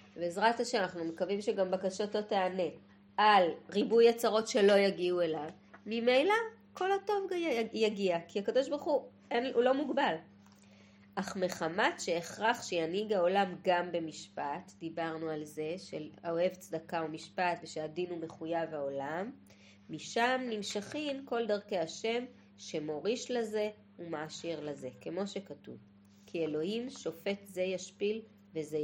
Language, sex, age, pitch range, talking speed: Hebrew, female, 30-49, 160-210 Hz, 125 wpm